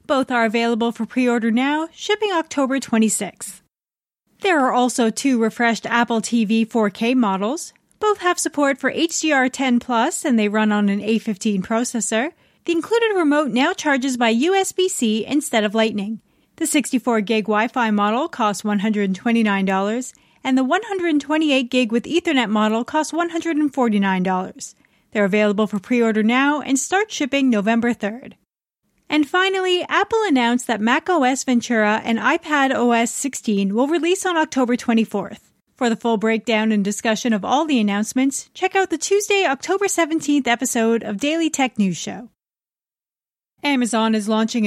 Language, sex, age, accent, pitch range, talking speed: English, female, 30-49, American, 220-300 Hz, 140 wpm